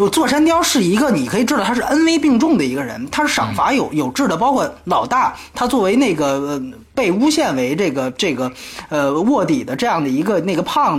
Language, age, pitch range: Chinese, 30-49, 195-295 Hz